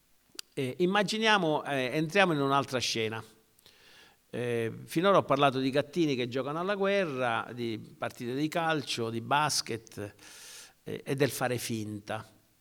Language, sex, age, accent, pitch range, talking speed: Italian, male, 50-69, native, 115-155 Hz, 135 wpm